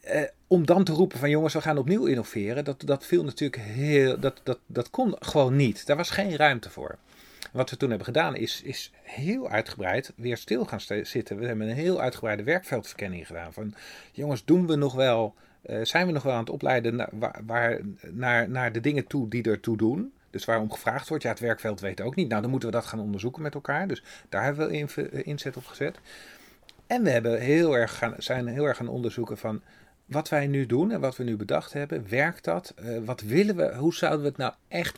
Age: 40-59